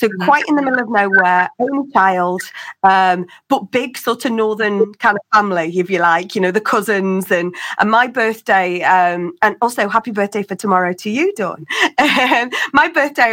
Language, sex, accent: English, female, British